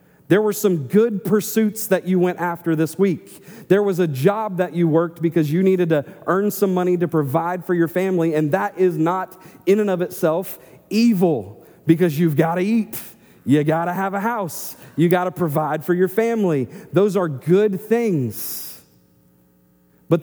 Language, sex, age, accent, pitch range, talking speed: English, male, 40-59, American, 140-185 Hz, 185 wpm